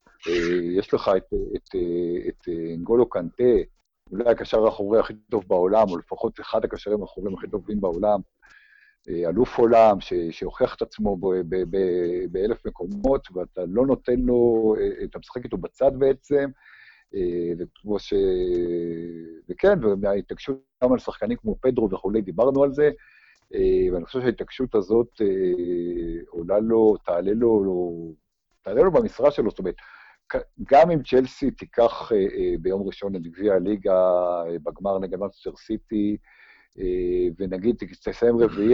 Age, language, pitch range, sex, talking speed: 60-79, Hebrew, 90-130 Hz, male, 125 wpm